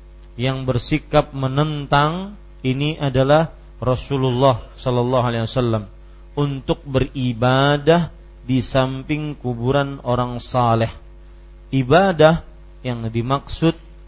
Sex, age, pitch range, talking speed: male, 40-59, 120-150 Hz, 80 wpm